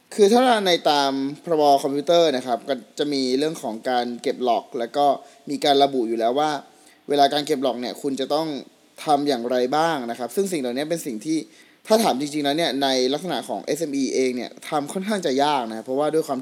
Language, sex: Thai, male